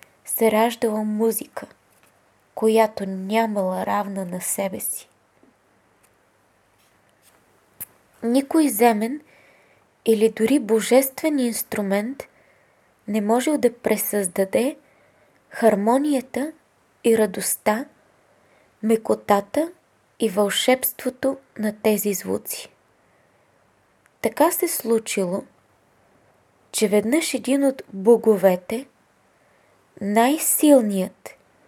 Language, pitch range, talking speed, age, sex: Bulgarian, 210-260 Hz, 70 wpm, 20-39, female